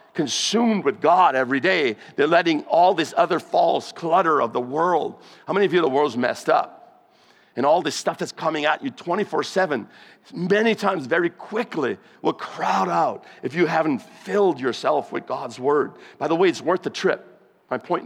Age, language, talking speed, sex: 50-69, English, 190 wpm, male